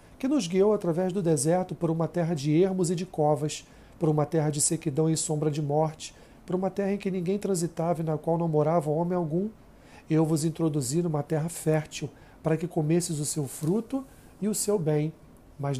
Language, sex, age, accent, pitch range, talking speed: Portuguese, male, 40-59, Brazilian, 150-180 Hz, 205 wpm